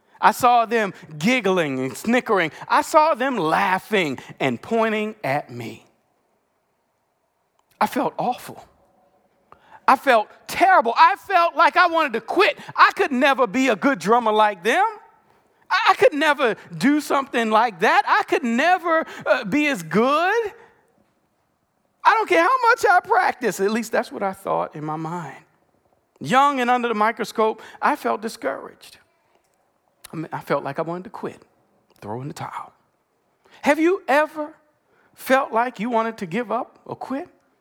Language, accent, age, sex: English, American, 40-59, male